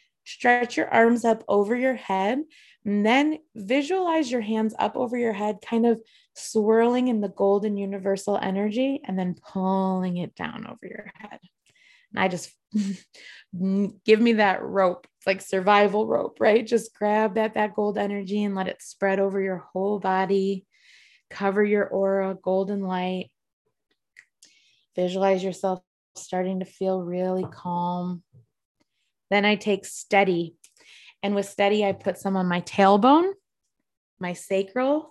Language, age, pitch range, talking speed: English, 20-39, 185-225 Hz, 145 wpm